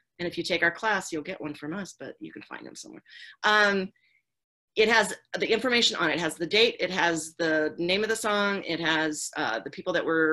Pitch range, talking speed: 160-215 Hz, 245 wpm